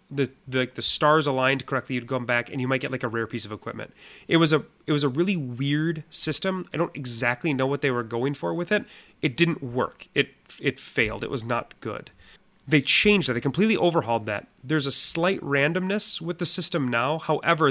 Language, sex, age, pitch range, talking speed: English, male, 30-49, 125-160 Hz, 220 wpm